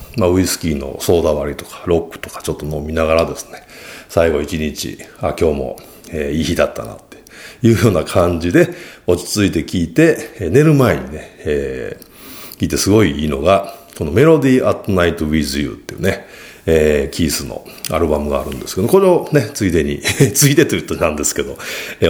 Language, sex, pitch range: Japanese, male, 75-120 Hz